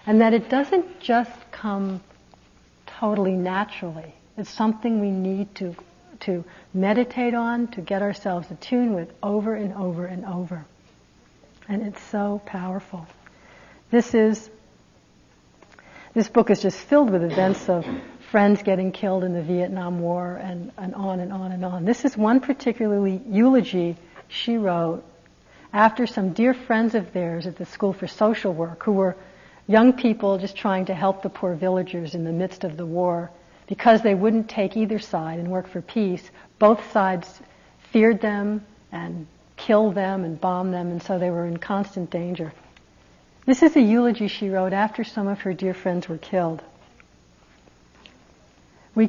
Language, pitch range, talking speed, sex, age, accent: English, 180-220 Hz, 160 wpm, female, 60-79, American